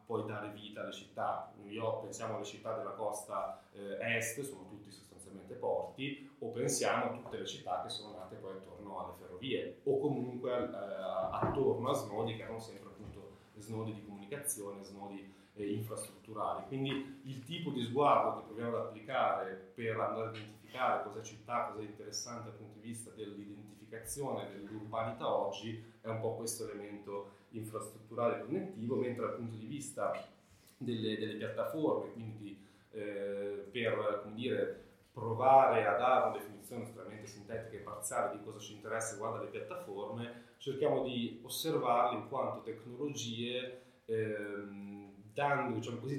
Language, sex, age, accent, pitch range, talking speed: Italian, male, 30-49, native, 105-125 Hz, 155 wpm